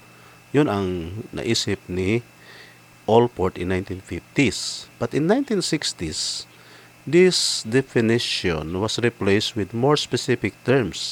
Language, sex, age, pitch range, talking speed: English, male, 50-69, 85-120 Hz, 95 wpm